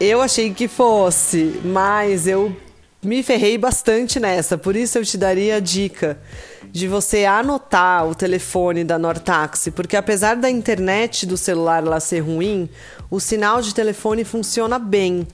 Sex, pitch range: female, 180-220 Hz